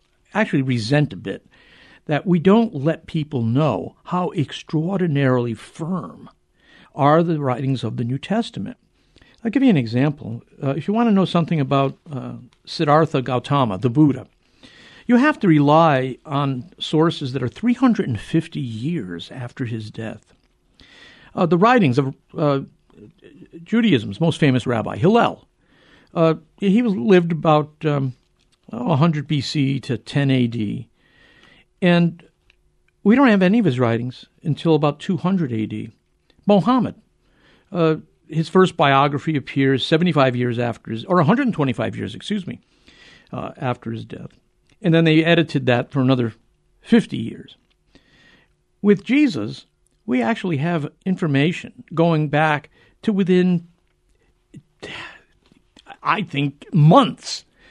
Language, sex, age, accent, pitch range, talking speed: English, male, 60-79, American, 130-180 Hz, 125 wpm